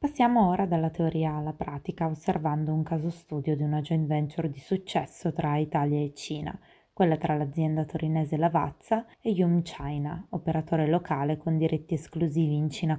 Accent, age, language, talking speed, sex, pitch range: native, 20-39, Italian, 160 wpm, female, 150-175 Hz